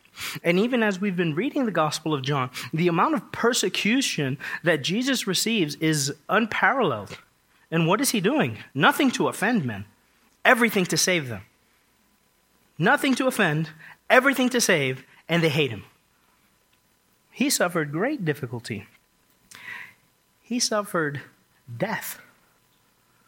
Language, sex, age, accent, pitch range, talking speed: English, male, 30-49, American, 150-205 Hz, 125 wpm